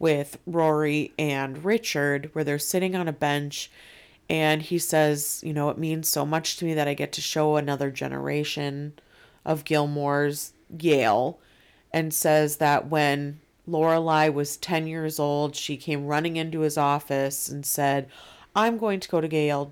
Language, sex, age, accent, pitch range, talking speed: English, female, 30-49, American, 145-170 Hz, 165 wpm